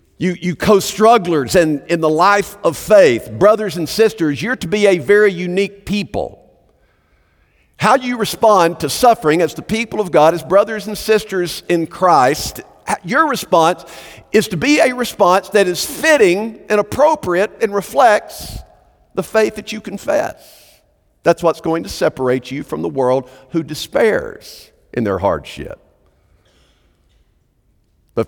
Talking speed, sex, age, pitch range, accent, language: 150 wpm, male, 50-69, 175-230 Hz, American, English